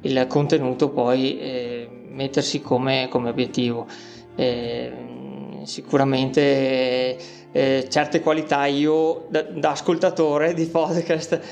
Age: 20-39